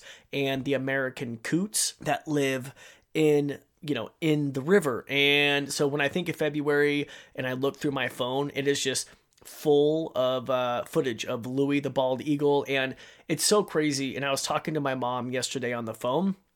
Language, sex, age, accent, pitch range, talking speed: English, male, 30-49, American, 130-150 Hz, 190 wpm